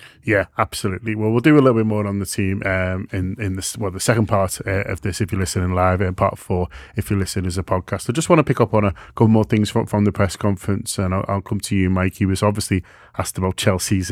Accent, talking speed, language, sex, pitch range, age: British, 275 wpm, English, male, 95-110 Hz, 20-39